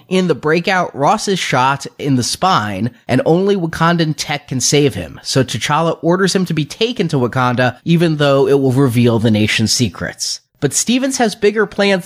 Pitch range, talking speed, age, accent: 130-170 Hz, 190 wpm, 30-49, American